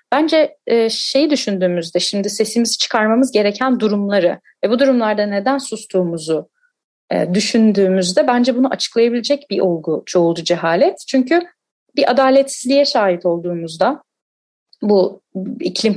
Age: 30-49